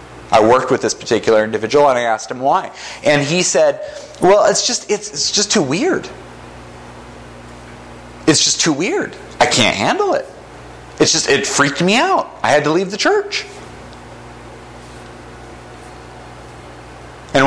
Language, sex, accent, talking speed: English, male, American, 150 wpm